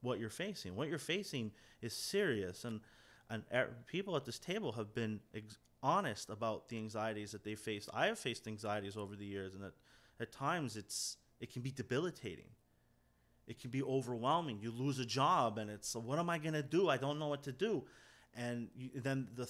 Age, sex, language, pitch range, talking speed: 30-49, male, English, 110-145 Hz, 205 wpm